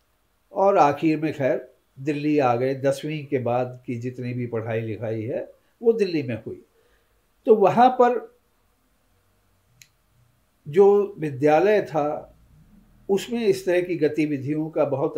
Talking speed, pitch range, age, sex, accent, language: 130 wpm, 130-170 Hz, 50-69, male, native, Hindi